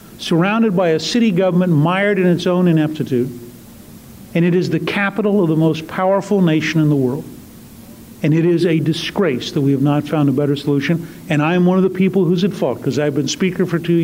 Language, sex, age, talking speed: English, male, 50-69, 220 wpm